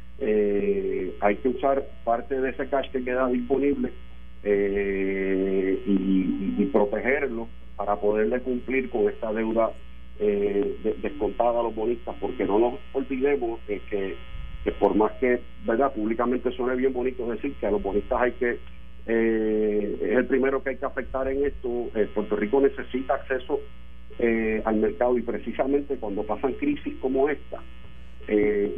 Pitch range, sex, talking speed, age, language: 105-130 Hz, male, 160 wpm, 50-69, Spanish